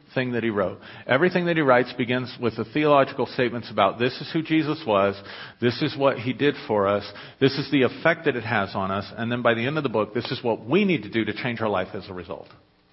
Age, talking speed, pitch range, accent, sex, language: 40-59, 265 wpm, 110-150 Hz, American, male, English